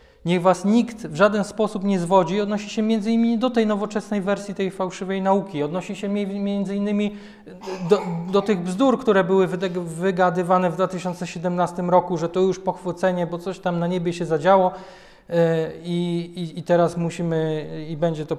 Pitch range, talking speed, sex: 160-195 Hz, 170 wpm, male